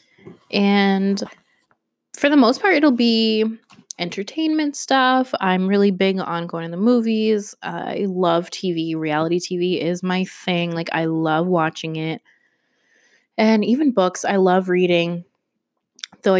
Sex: female